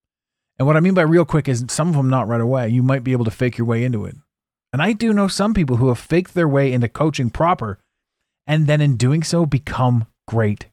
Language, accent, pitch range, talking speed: English, American, 105-140 Hz, 250 wpm